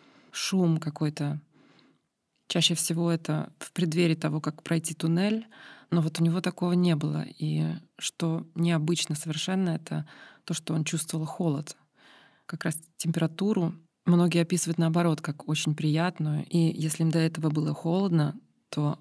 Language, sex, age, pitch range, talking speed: Russian, female, 20-39, 155-170 Hz, 140 wpm